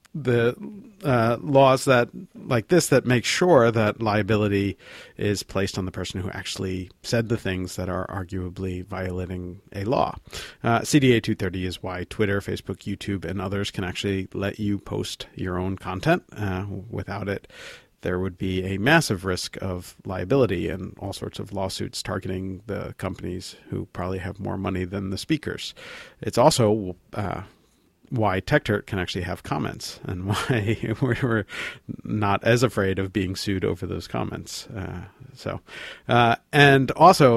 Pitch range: 95-115 Hz